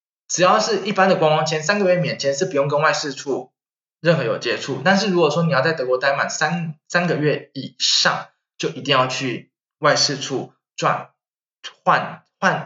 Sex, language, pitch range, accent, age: male, Chinese, 140-185 Hz, native, 20-39